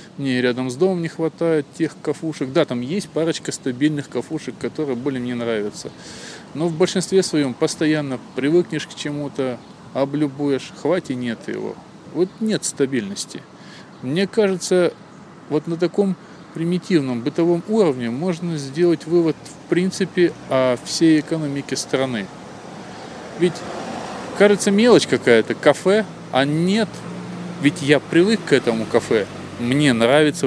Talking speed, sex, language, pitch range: 130 wpm, male, Russian, 130-175 Hz